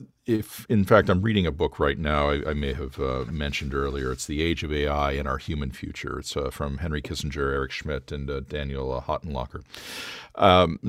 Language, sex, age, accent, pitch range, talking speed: English, male, 50-69, American, 70-90 Hz, 210 wpm